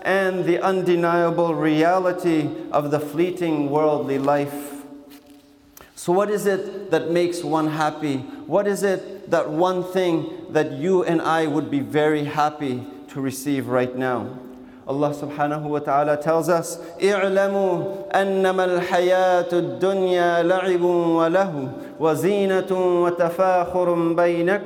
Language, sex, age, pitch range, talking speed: English, male, 40-59, 150-190 Hz, 95 wpm